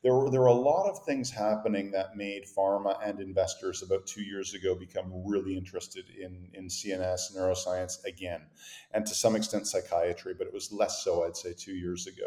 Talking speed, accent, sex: 200 wpm, American, male